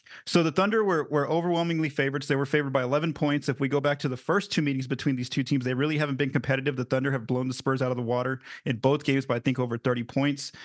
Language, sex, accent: English, male, American